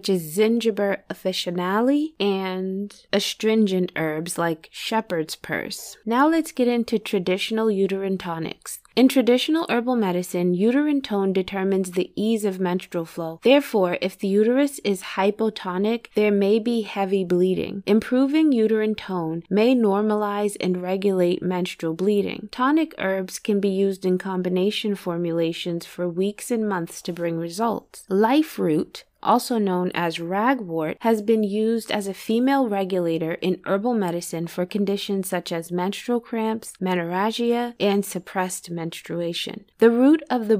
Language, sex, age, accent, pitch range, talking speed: English, female, 20-39, American, 180-220 Hz, 140 wpm